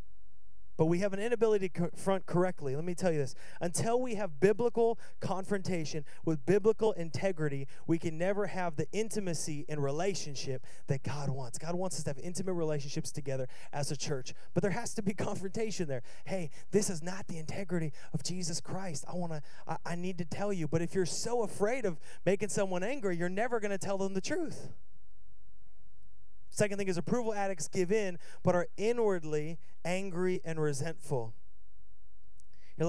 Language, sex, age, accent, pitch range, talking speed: English, male, 30-49, American, 150-195 Hz, 180 wpm